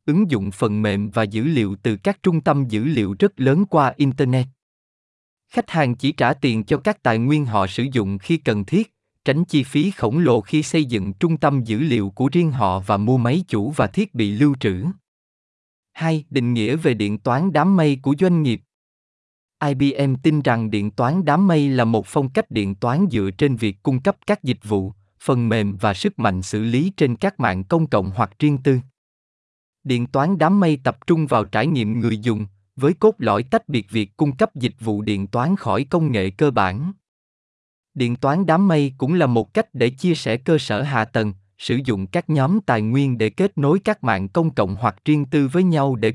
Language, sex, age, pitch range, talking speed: Vietnamese, male, 20-39, 110-155 Hz, 215 wpm